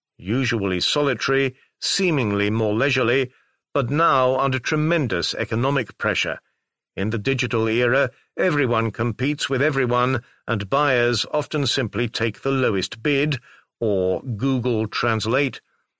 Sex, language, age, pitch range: male, Chinese, 50-69, 110-140 Hz